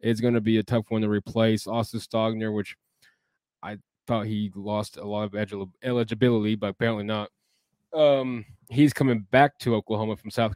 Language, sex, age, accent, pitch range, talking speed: English, male, 20-39, American, 105-120 Hz, 175 wpm